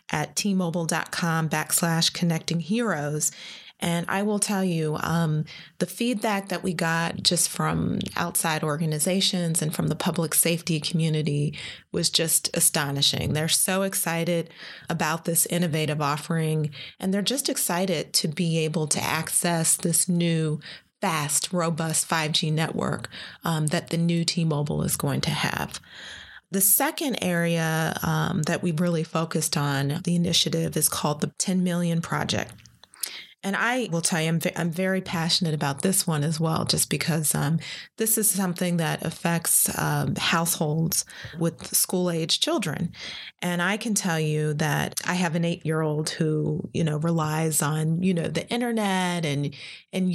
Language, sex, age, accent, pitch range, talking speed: English, female, 30-49, American, 160-185 Hz, 155 wpm